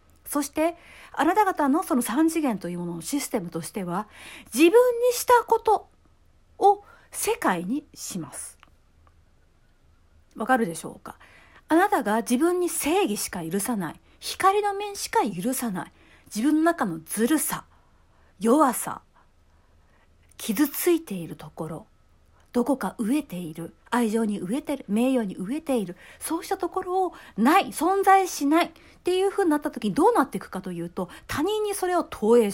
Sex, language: female, Japanese